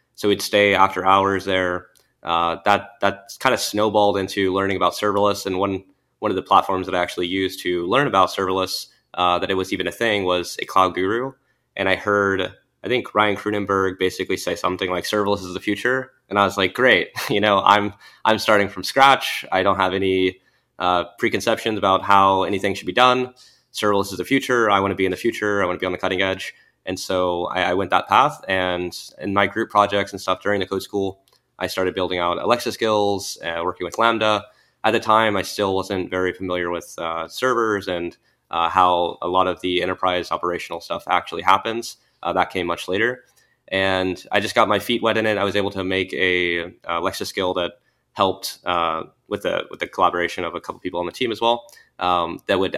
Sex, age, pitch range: male, 20-39, 90-105 Hz